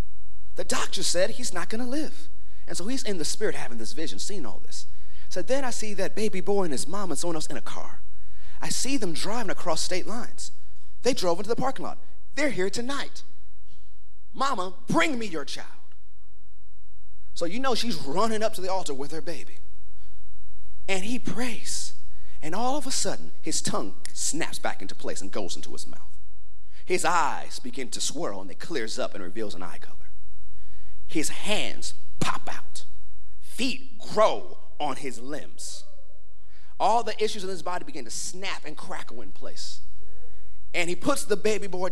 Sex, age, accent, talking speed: male, 30-49, American, 185 wpm